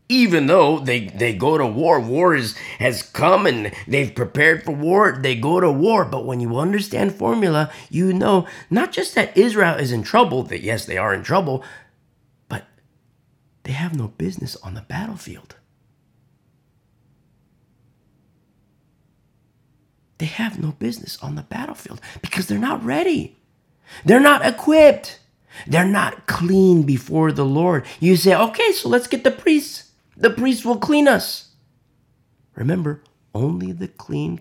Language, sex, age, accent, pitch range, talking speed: English, male, 30-49, American, 125-180 Hz, 145 wpm